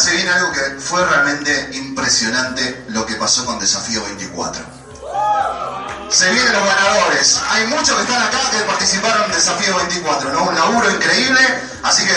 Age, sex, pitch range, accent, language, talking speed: 30-49, male, 145-235 Hz, Argentinian, Spanish, 160 wpm